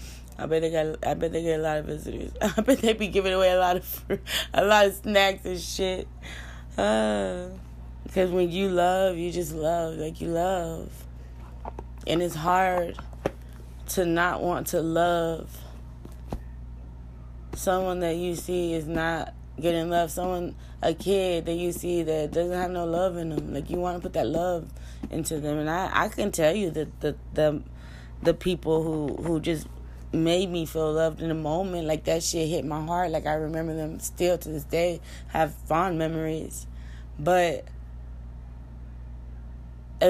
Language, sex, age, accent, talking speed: English, female, 20-39, American, 175 wpm